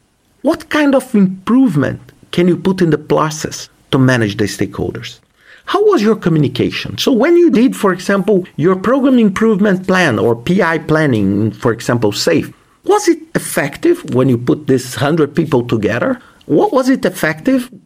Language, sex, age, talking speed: English, male, 50-69, 160 wpm